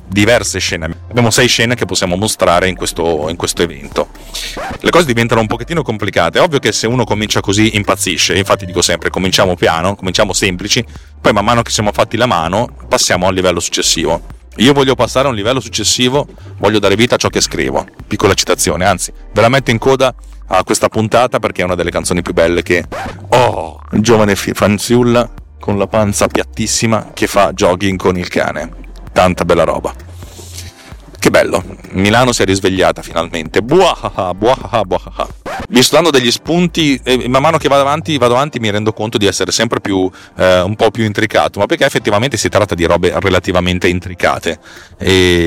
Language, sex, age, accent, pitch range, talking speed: Italian, male, 40-59, native, 90-115 Hz, 180 wpm